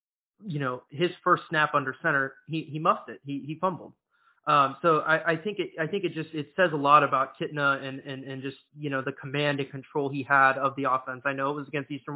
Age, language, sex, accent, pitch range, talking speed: 20-39, English, male, American, 135-160 Hz, 250 wpm